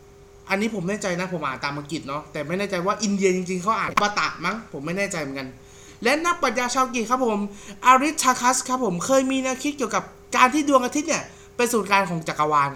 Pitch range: 170-240 Hz